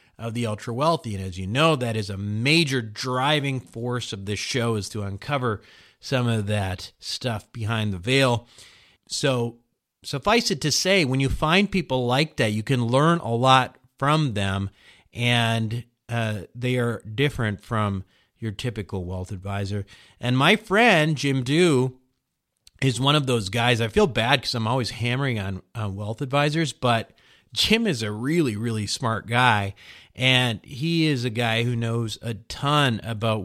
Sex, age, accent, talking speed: male, 40-59, American, 170 wpm